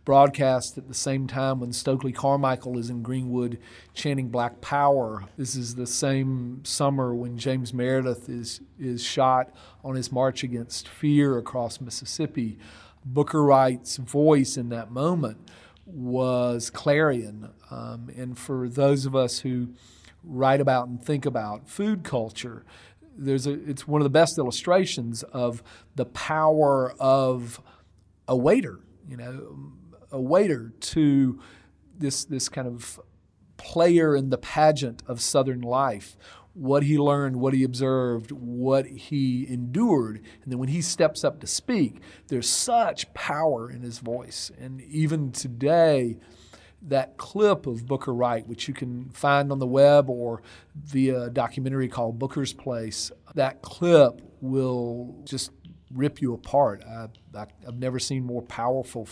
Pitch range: 120-140 Hz